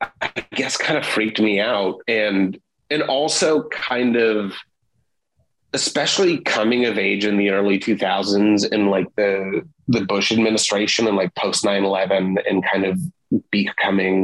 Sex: male